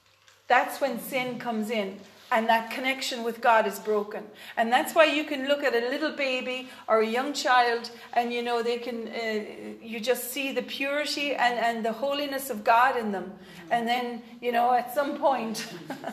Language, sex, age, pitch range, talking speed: English, female, 40-59, 220-260 Hz, 195 wpm